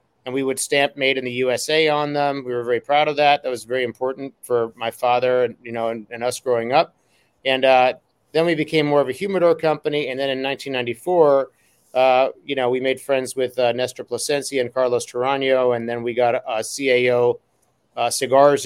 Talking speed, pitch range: 215 wpm, 120-145 Hz